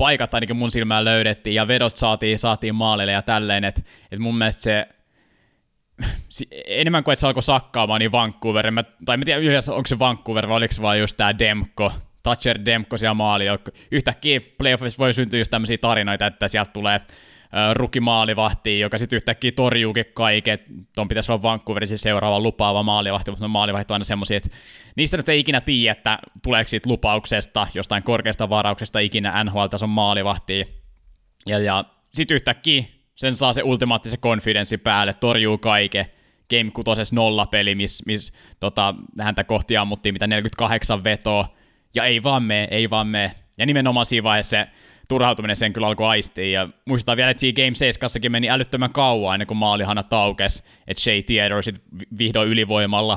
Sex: male